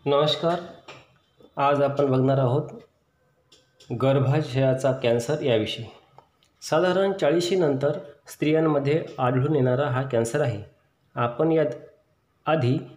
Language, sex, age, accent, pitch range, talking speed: Marathi, male, 30-49, native, 125-150 Hz, 85 wpm